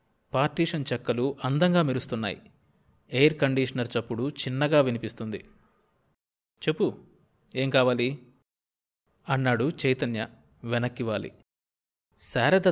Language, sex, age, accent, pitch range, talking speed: Telugu, male, 20-39, native, 120-150 Hz, 75 wpm